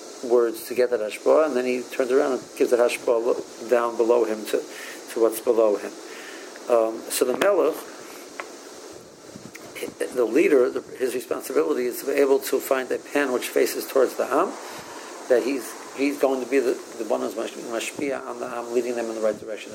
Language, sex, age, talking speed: English, male, 50-69, 195 wpm